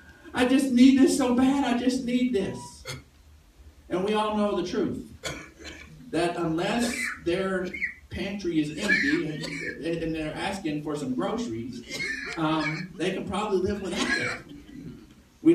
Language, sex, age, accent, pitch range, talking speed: English, male, 50-69, American, 155-235 Hz, 140 wpm